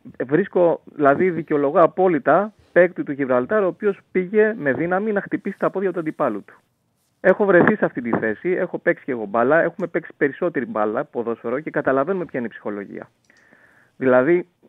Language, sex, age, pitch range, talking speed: Greek, male, 30-49, 120-180 Hz, 170 wpm